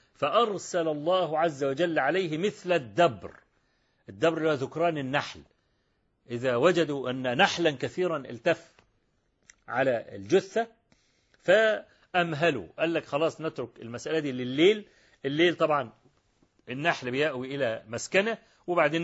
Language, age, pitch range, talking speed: Arabic, 40-59, 140-185 Hz, 105 wpm